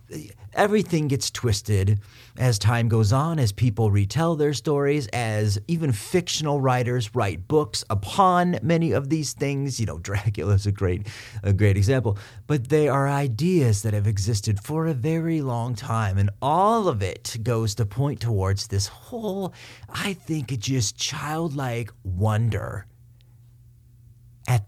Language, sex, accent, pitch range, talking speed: English, male, American, 105-135 Hz, 140 wpm